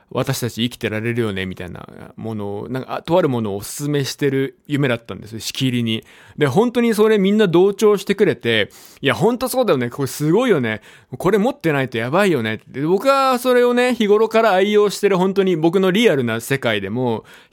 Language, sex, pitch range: Japanese, male, 110-170 Hz